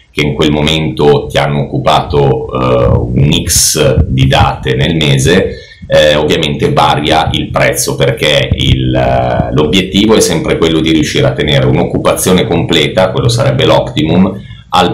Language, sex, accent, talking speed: Italian, male, native, 135 wpm